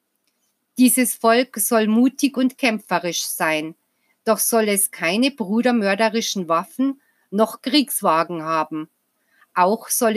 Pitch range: 185-245 Hz